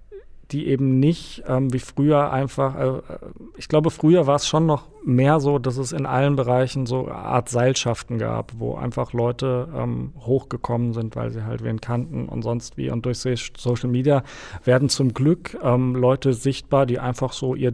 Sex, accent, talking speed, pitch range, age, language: male, German, 185 wpm, 120-140 Hz, 40-59, German